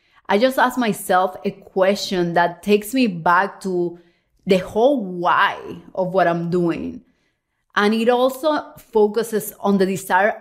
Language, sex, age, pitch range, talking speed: English, female, 30-49, 180-225 Hz, 145 wpm